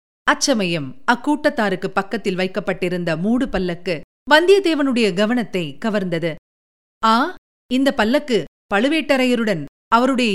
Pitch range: 220-275 Hz